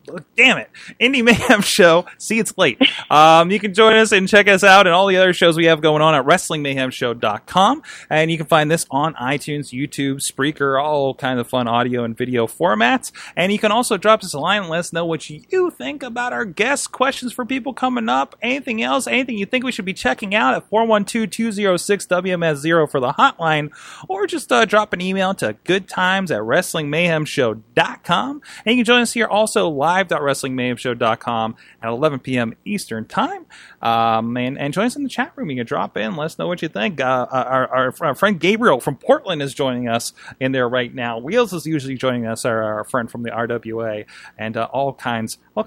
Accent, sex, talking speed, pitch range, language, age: American, male, 205 wpm, 130-220 Hz, English, 30-49